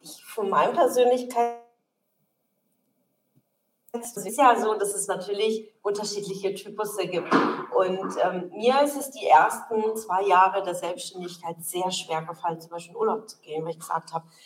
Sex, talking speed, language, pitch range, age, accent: female, 150 wpm, German, 180-230 Hz, 30-49, German